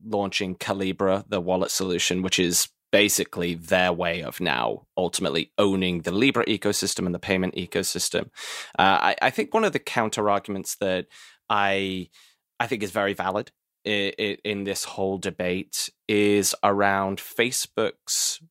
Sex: male